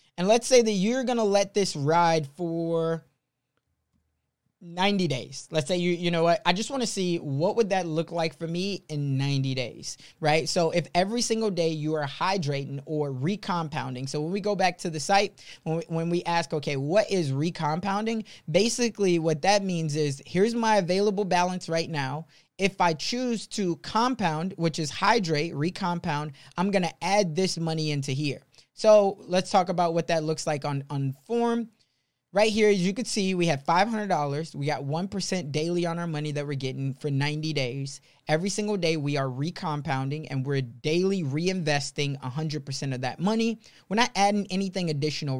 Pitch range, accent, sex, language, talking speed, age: 135-190 Hz, American, male, English, 185 wpm, 20-39